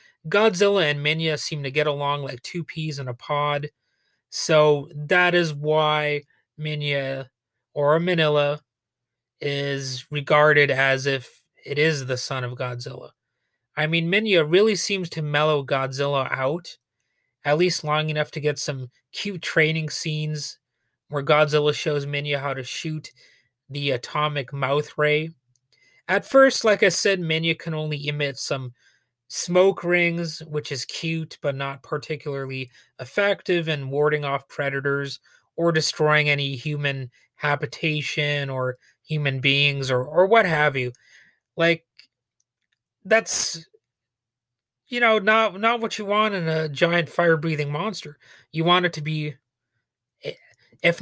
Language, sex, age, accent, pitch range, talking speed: English, male, 30-49, American, 135-165 Hz, 135 wpm